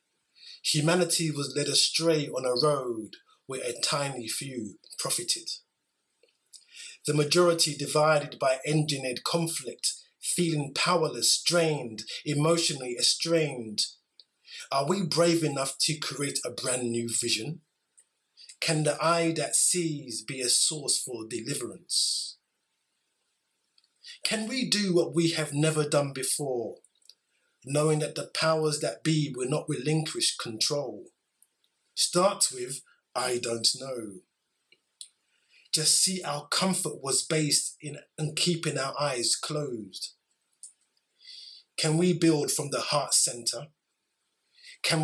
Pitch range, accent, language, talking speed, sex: 135-170 Hz, British, English, 115 wpm, male